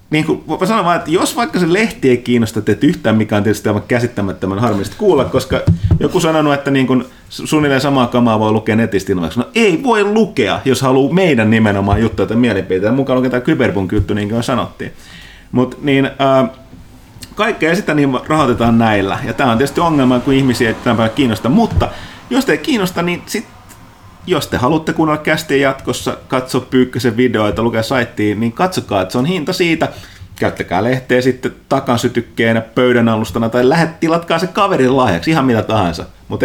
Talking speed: 180 wpm